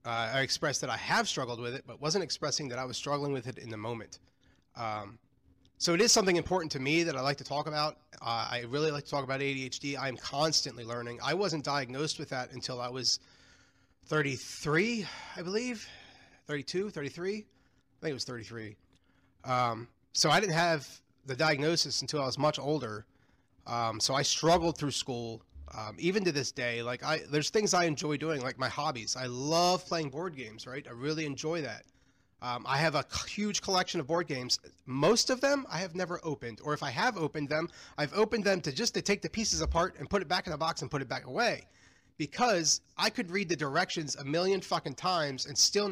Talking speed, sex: 215 wpm, male